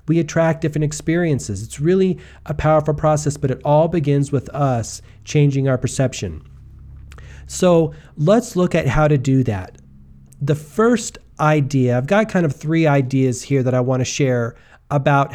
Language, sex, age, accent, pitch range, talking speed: English, male, 40-59, American, 130-160 Hz, 165 wpm